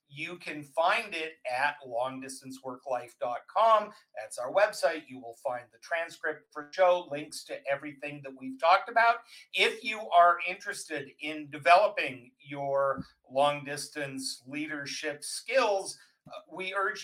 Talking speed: 125 wpm